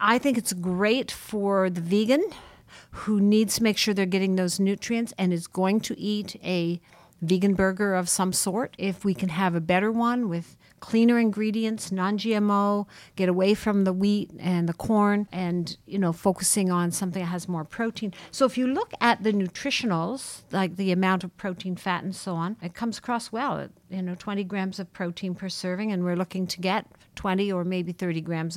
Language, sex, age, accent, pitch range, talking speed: English, female, 50-69, American, 185-215 Hz, 195 wpm